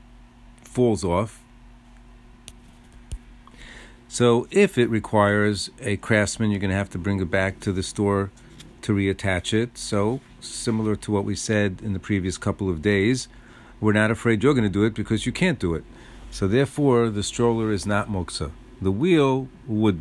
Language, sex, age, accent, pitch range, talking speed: English, male, 50-69, American, 100-120 Hz, 170 wpm